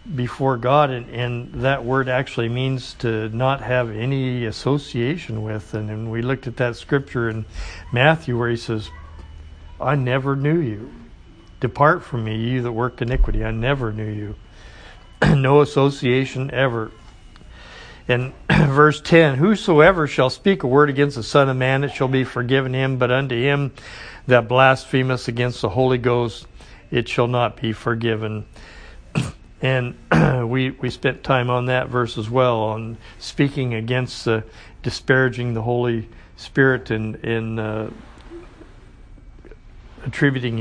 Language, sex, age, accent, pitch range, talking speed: English, male, 50-69, American, 110-135 Hz, 145 wpm